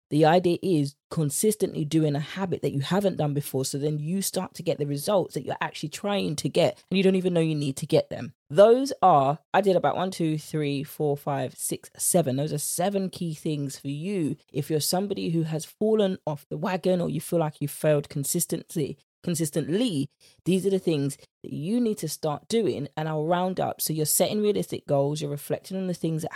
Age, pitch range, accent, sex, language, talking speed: 20-39, 145-180 Hz, British, female, English, 220 wpm